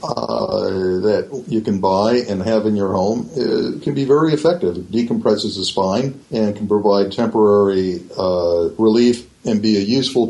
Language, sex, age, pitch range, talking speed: English, male, 50-69, 95-115 Hz, 170 wpm